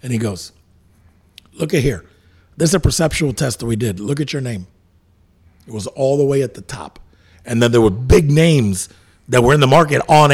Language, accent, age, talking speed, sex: English, American, 50-69, 220 wpm, male